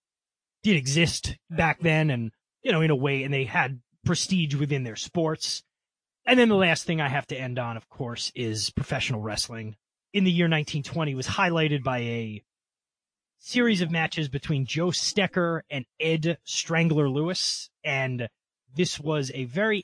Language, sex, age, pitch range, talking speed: English, male, 30-49, 125-165 Hz, 165 wpm